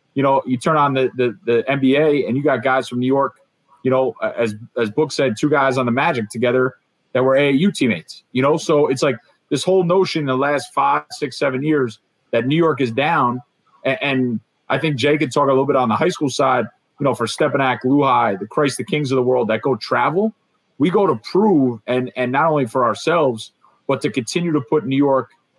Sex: male